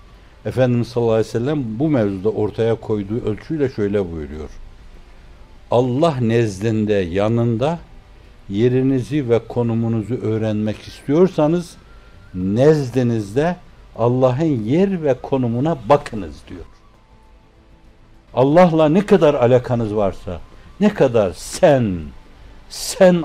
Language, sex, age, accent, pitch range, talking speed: Turkish, male, 60-79, native, 100-145 Hz, 95 wpm